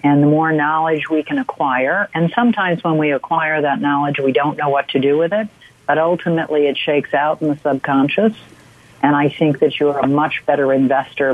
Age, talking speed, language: 50-69, 210 wpm, English